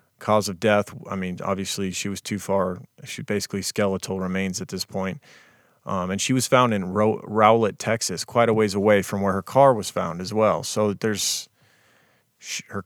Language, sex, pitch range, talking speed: English, male, 95-110 Hz, 185 wpm